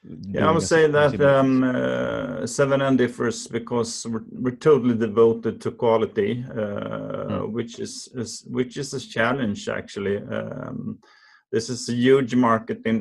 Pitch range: 105-130 Hz